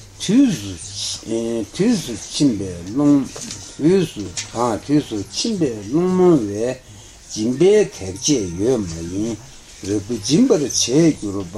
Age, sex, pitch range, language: 60-79, male, 100-150 Hz, Italian